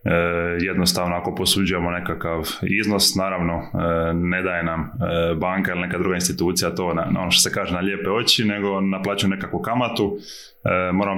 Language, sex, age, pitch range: Croatian, male, 20-39, 85-95 Hz